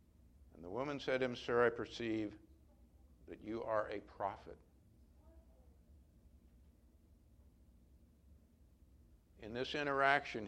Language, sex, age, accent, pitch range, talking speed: English, male, 60-79, American, 80-120 Hz, 90 wpm